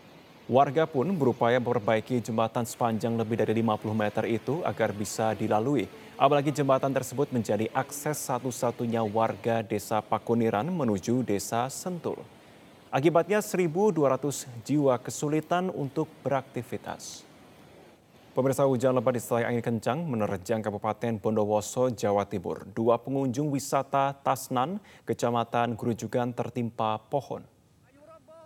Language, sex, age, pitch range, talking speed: Indonesian, male, 20-39, 110-140 Hz, 110 wpm